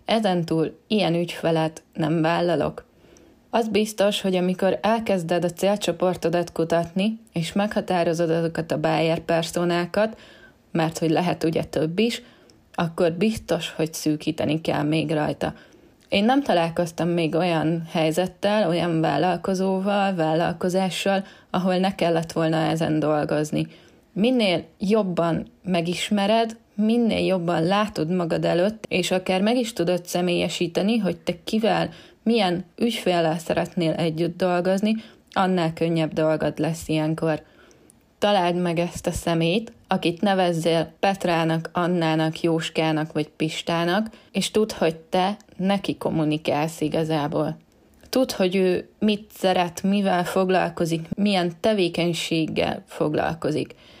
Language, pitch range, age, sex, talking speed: Hungarian, 165-195 Hz, 20-39, female, 115 wpm